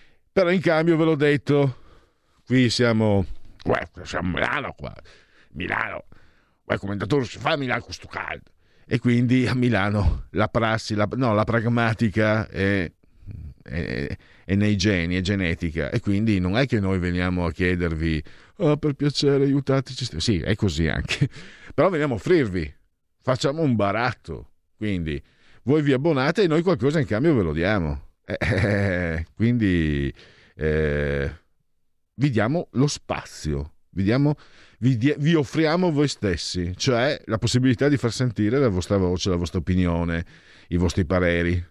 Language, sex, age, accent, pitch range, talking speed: Italian, male, 50-69, native, 85-125 Hz, 150 wpm